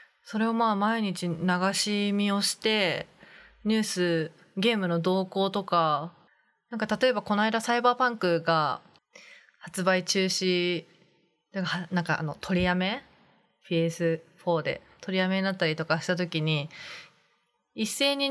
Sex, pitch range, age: female, 175-235 Hz, 20-39